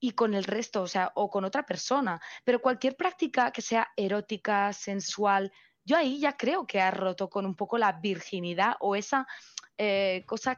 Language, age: Spanish, 20-39